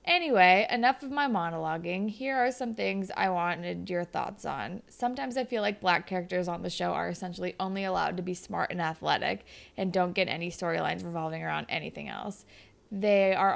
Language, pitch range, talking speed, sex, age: English, 180-215 Hz, 190 wpm, female, 20-39